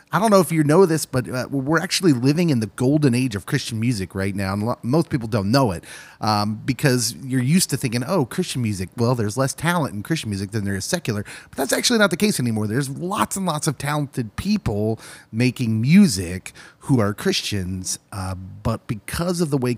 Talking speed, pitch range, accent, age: 220 wpm, 105-145 Hz, American, 30-49